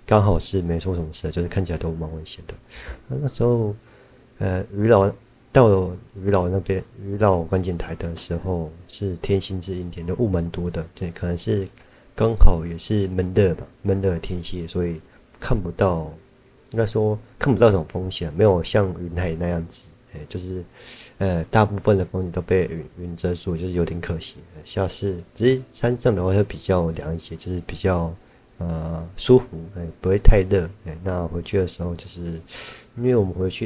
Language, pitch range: Chinese, 85-100 Hz